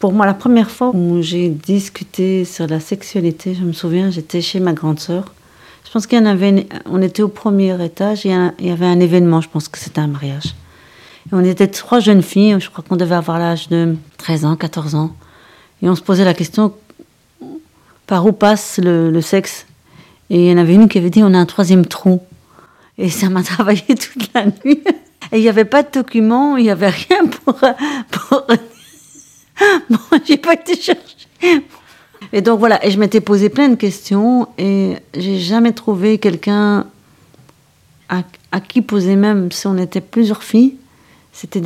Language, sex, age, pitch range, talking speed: French, female, 40-59, 175-215 Hz, 190 wpm